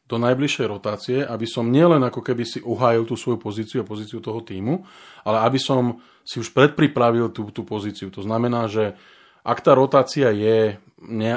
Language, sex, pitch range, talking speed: Slovak, male, 105-125 Hz, 180 wpm